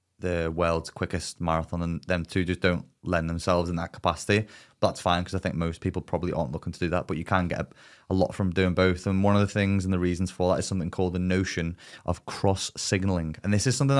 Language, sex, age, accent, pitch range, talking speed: English, male, 20-39, British, 90-100 Hz, 255 wpm